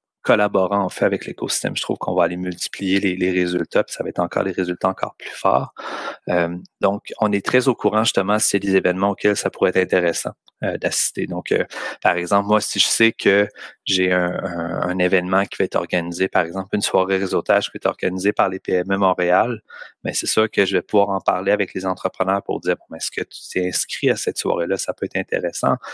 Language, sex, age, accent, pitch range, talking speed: French, male, 30-49, Canadian, 90-100 Hz, 235 wpm